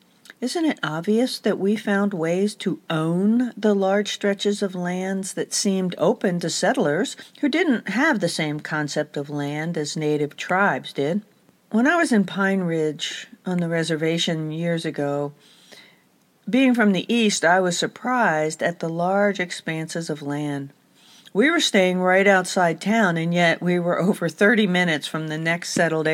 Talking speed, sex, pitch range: 165 wpm, female, 160-215 Hz